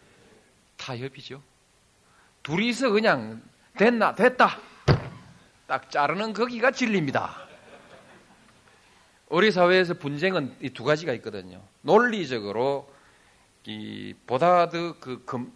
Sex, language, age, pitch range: male, Korean, 40-59, 135-210 Hz